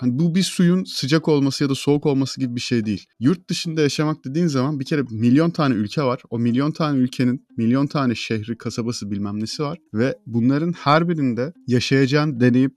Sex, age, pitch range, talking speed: male, 30-49, 115-150 Hz, 195 wpm